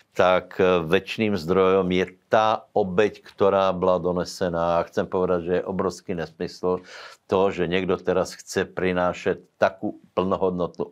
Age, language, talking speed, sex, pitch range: 60-79, Slovak, 125 wpm, male, 85-95 Hz